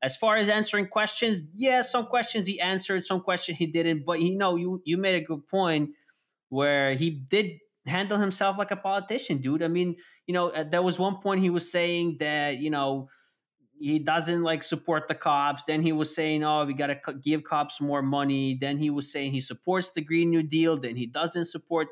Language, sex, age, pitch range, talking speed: English, male, 20-39, 135-180 Hz, 215 wpm